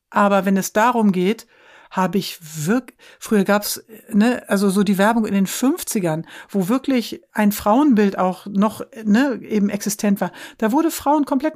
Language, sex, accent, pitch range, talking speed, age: German, female, German, 180-225 Hz, 170 wpm, 60-79